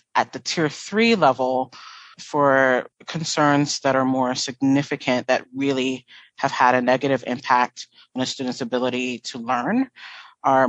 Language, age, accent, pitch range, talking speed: English, 30-49, American, 125-150 Hz, 140 wpm